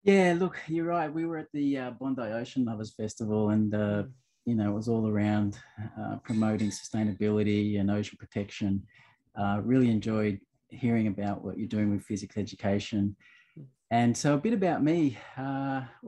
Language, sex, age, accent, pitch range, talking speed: English, male, 30-49, Australian, 100-120 Hz, 170 wpm